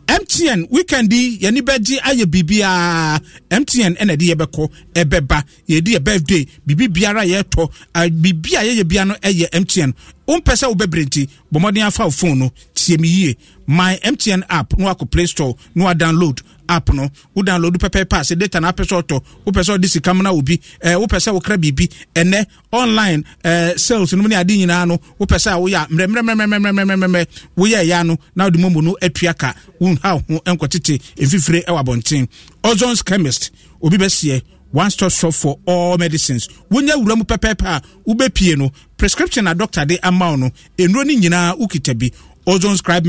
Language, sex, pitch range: English, male, 155-205 Hz